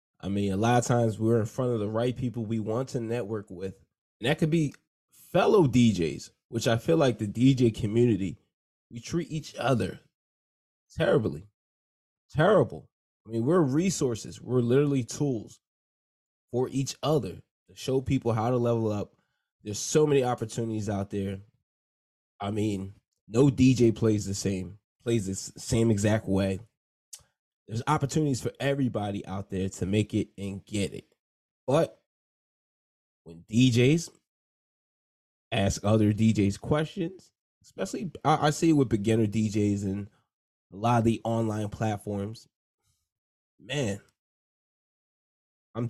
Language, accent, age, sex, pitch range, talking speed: English, American, 20-39, male, 100-130 Hz, 140 wpm